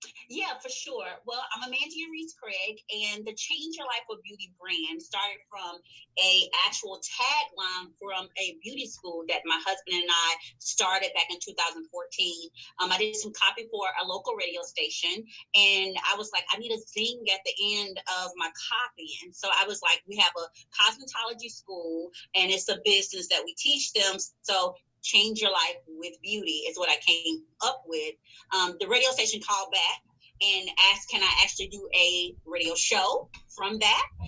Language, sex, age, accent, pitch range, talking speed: English, female, 30-49, American, 185-260 Hz, 185 wpm